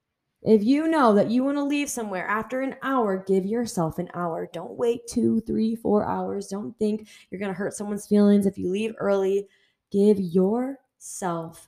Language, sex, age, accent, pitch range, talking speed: English, female, 20-39, American, 175-220 Hz, 185 wpm